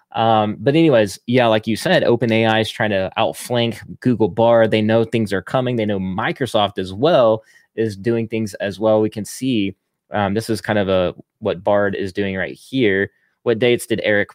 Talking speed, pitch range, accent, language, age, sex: 205 wpm, 100-115 Hz, American, English, 20-39, male